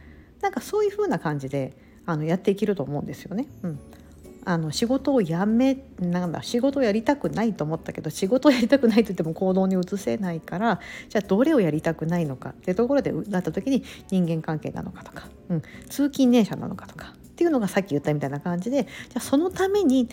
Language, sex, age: Japanese, female, 50-69